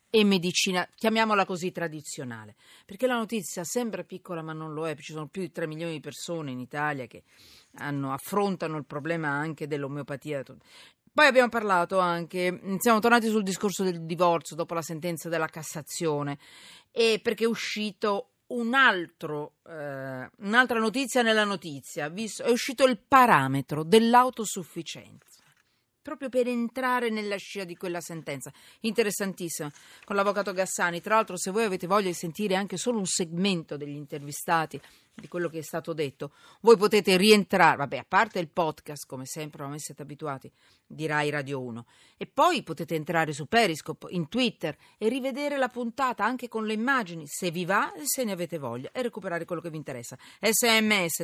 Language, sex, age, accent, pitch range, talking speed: Italian, female, 40-59, native, 155-220 Hz, 165 wpm